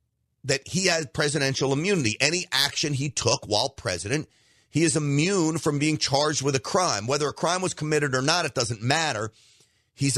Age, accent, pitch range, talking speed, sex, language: 40-59, American, 115-155 Hz, 185 wpm, male, English